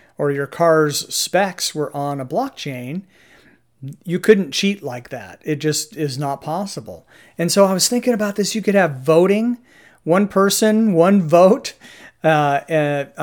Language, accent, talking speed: English, American, 160 wpm